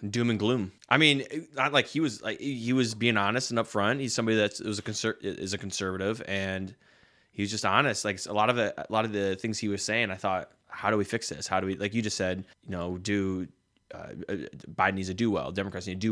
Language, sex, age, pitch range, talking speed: English, male, 20-39, 95-115 Hz, 265 wpm